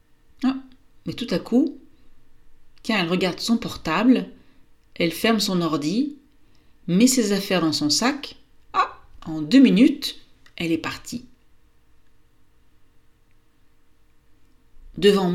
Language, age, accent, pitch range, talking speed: French, 40-59, French, 175-255 Hz, 105 wpm